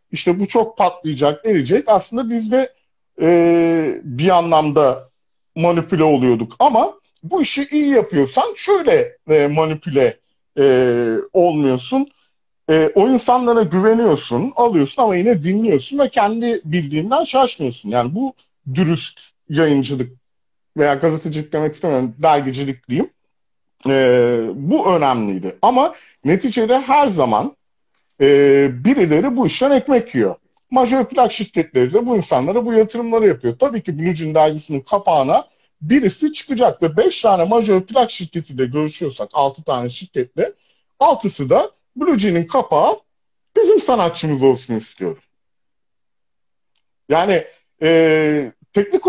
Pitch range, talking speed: 150-245 Hz, 115 wpm